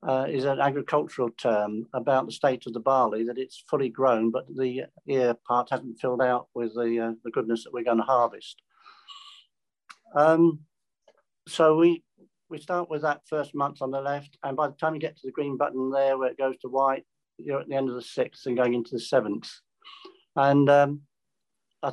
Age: 50-69